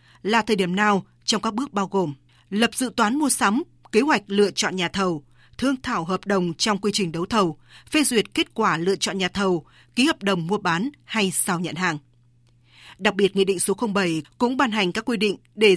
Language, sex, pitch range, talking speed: Vietnamese, female, 185-235 Hz, 225 wpm